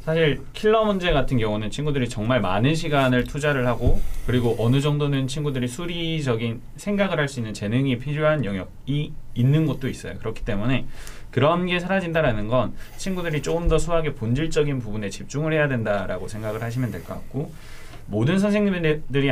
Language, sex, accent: Korean, male, native